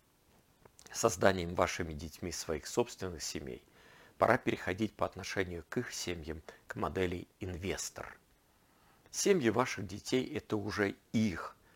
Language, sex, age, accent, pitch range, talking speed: Russian, male, 50-69, native, 85-110 Hz, 110 wpm